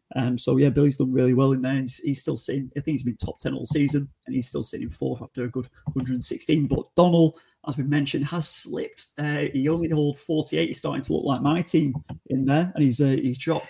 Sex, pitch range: male, 130-150 Hz